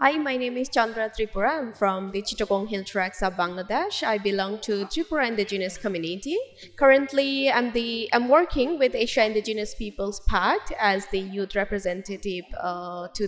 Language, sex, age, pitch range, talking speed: English, female, 20-39, 205-260 Hz, 165 wpm